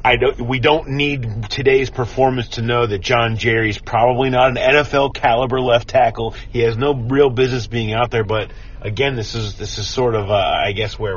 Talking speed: 220 wpm